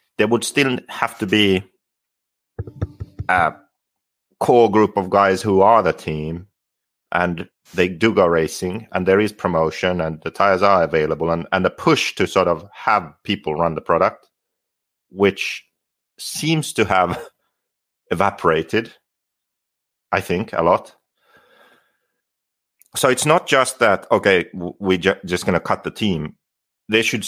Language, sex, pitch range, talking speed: English, male, 90-110 Hz, 145 wpm